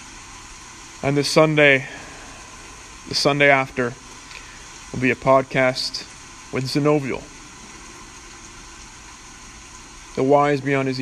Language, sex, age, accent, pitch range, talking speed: English, male, 20-39, American, 125-140 Hz, 85 wpm